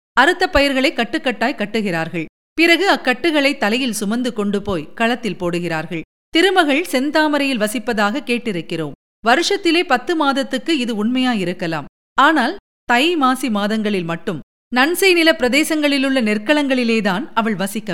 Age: 50-69